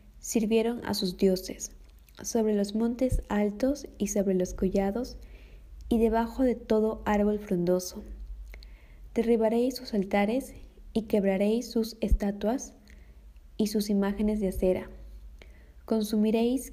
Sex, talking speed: female, 110 wpm